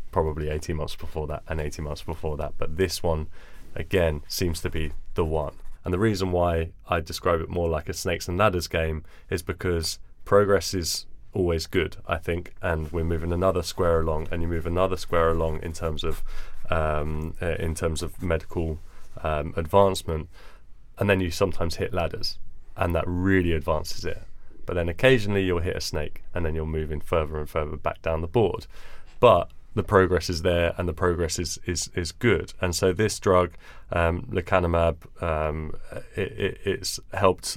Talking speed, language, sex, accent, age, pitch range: 185 wpm, English, male, British, 20-39, 80-95 Hz